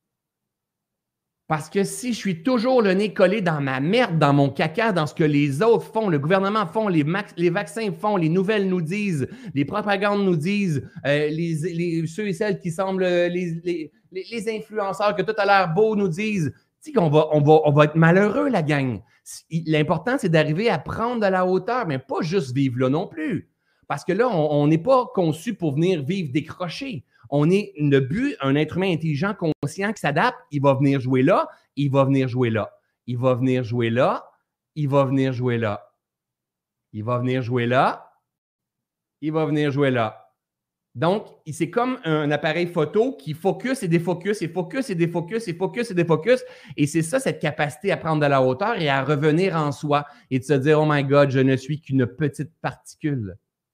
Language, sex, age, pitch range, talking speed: French, male, 30-49, 140-195 Hz, 205 wpm